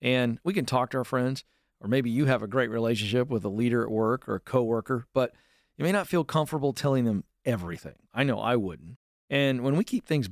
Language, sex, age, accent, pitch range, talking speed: English, male, 40-59, American, 115-150 Hz, 235 wpm